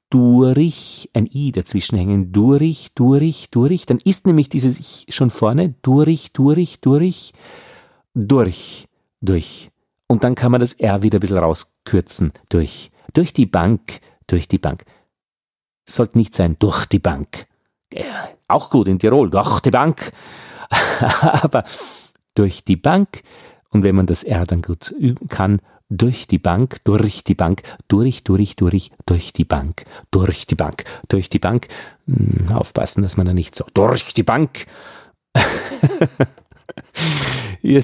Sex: male